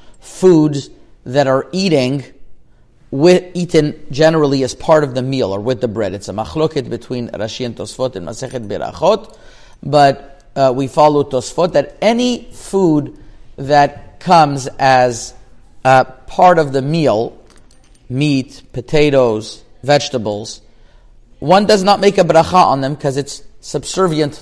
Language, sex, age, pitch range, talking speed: English, male, 40-59, 125-160 Hz, 140 wpm